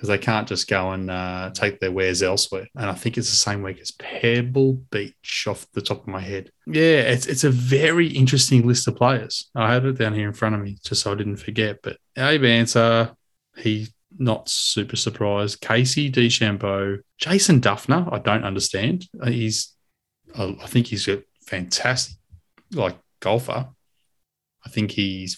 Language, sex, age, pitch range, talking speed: English, male, 20-39, 100-120 Hz, 175 wpm